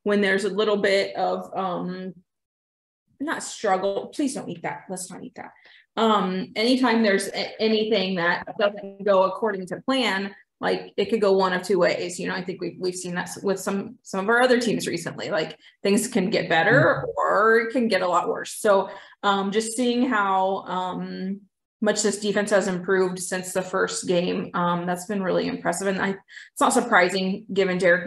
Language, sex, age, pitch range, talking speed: English, female, 20-39, 180-210 Hz, 195 wpm